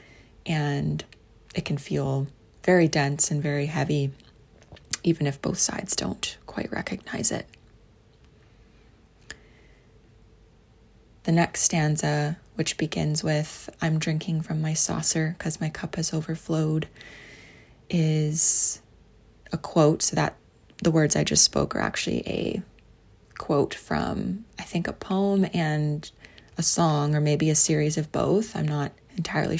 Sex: female